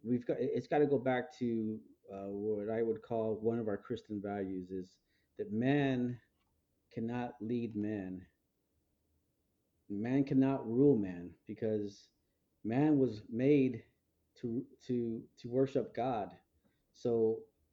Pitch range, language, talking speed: 110-140 Hz, English, 130 wpm